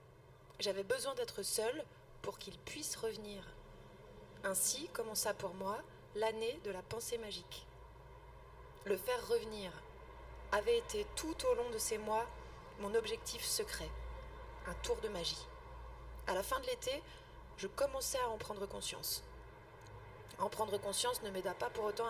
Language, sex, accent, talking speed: French, female, French, 145 wpm